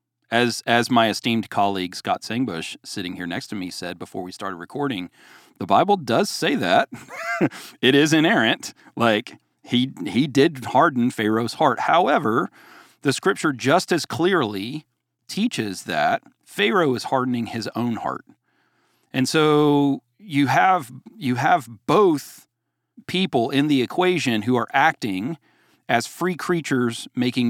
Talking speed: 140 wpm